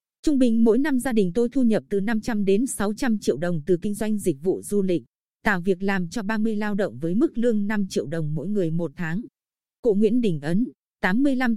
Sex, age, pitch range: female, 20-39, 190-240 Hz